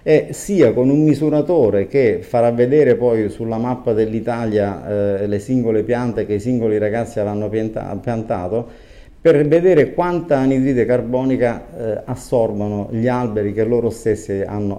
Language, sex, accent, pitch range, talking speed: Italian, male, native, 105-125 Hz, 140 wpm